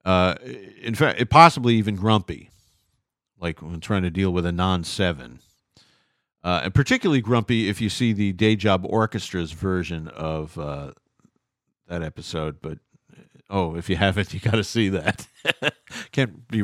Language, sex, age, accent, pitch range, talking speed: English, male, 50-69, American, 90-125 Hz, 160 wpm